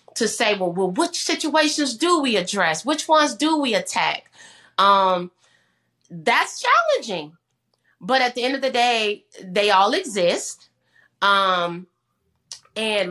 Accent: American